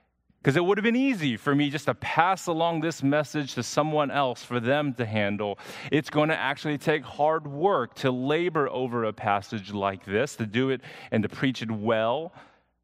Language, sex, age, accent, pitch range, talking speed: English, male, 30-49, American, 105-140 Hz, 200 wpm